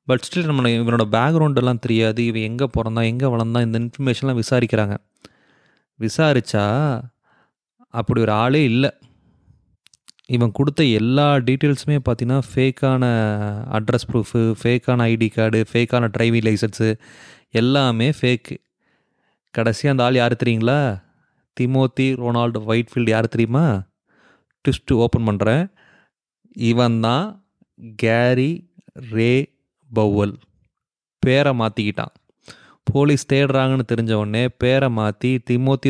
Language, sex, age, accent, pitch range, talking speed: English, male, 30-49, Indian, 115-135 Hz, 90 wpm